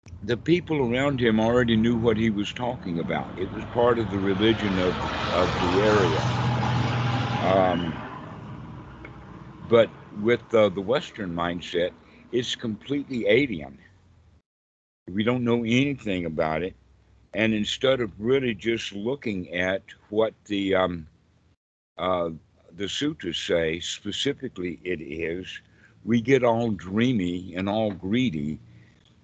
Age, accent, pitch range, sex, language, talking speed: 60-79, American, 90-115 Hz, male, English, 125 wpm